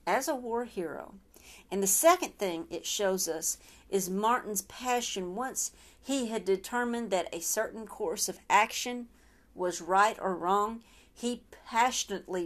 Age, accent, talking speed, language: 50-69, American, 145 wpm, English